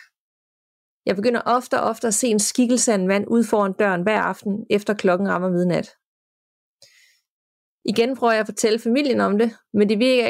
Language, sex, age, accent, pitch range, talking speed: Danish, female, 30-49, native, 195-235 Hz, 185 wpm